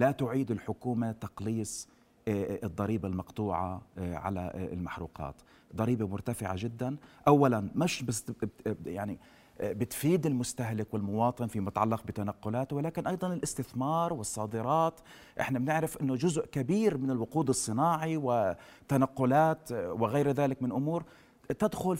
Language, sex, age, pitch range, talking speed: Arabic, male, 40-59, 115-155 Hz, 105 wpm